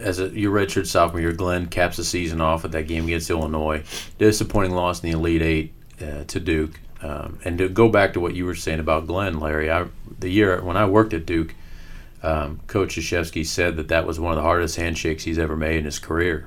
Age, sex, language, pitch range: 40-59, male, English, 80-95 Hz